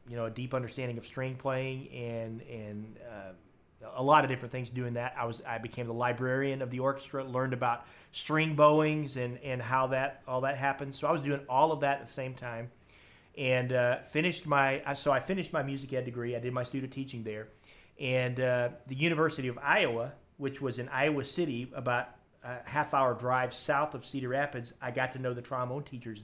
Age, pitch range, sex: 30-49, 120-140 Hz, male